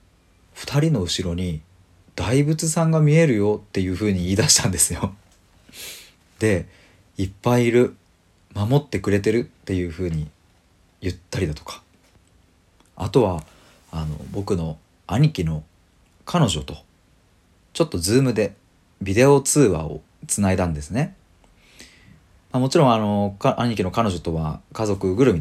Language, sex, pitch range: Japanese, male, 85-115 Hz